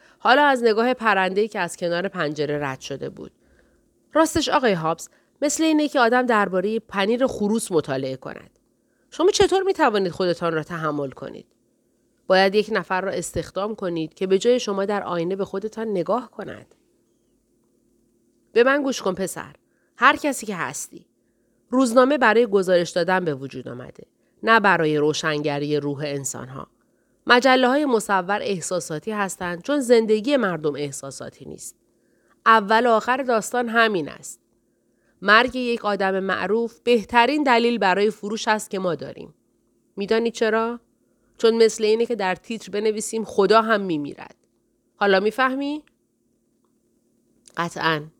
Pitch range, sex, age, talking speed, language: 170-235 Hz, female, 30-49, 140 wpm, Persian